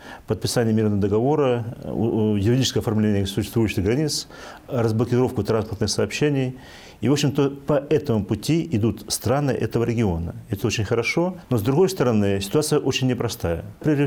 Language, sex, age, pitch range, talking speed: Russian, male, 40-59, 105-135 Hz, 130 wpm